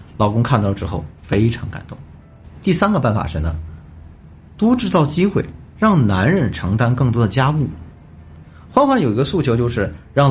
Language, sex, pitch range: Chinese, male, 95-140 Hz